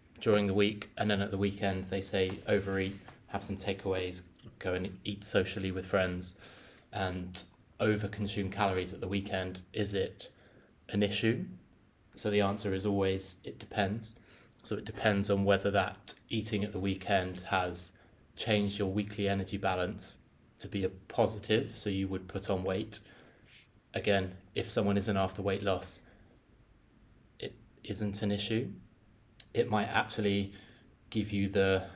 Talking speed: 150 wpm